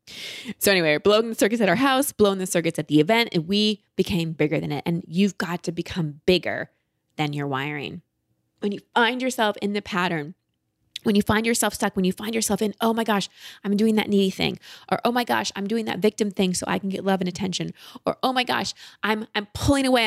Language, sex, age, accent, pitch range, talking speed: English, female, 20-39, American, 175-235 Hz, 235 wpm